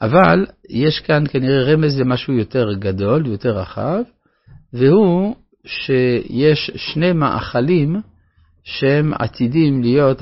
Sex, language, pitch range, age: male, Hebrew, 105-140 Hz, 50-69